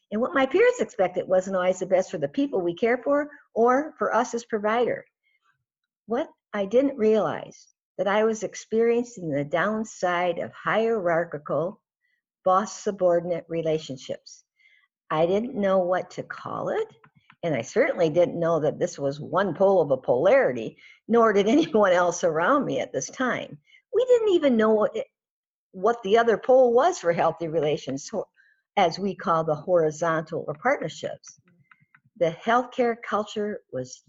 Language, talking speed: English, 155 wpm